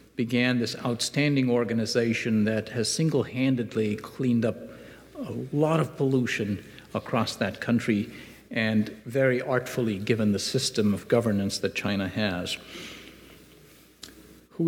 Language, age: English, 50-69